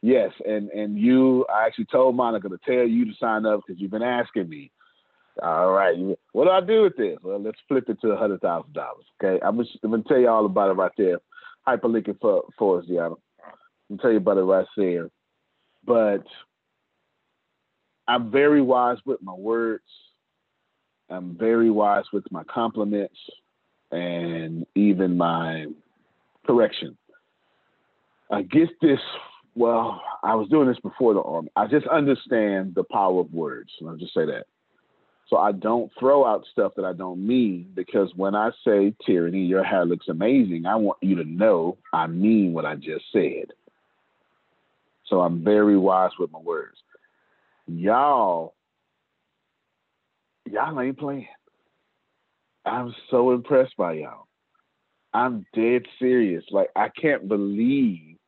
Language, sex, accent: English, male, American